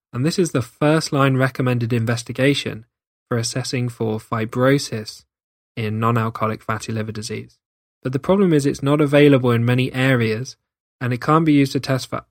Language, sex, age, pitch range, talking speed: English, male, 10-29, 115-135 Hz, 170 wpm